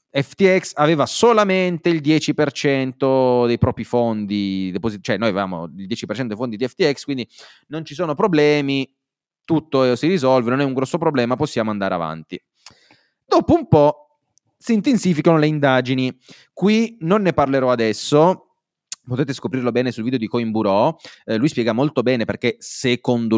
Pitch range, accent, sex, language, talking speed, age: 105-145 Hz, native, male, Italian, 155 wpm, 30-49